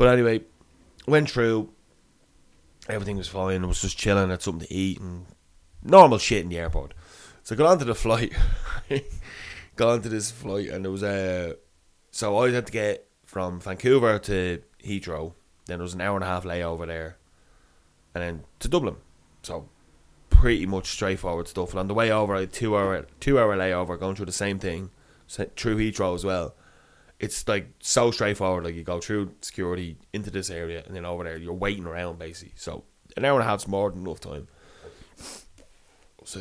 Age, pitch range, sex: 20-39, 85-100 Hz, male